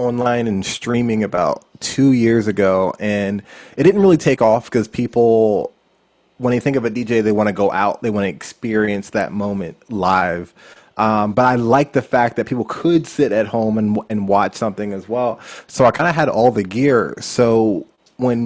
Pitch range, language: 105-125 Hz, English